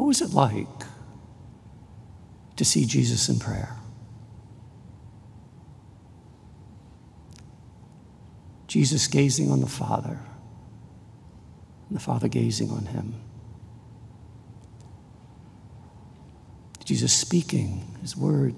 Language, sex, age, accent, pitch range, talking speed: English, male, 60-79, American, 110-130 Hz, 80 wpm